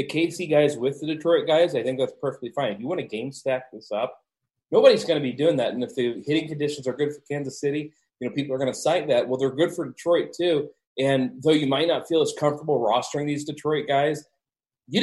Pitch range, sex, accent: 125-170 Hz, male, American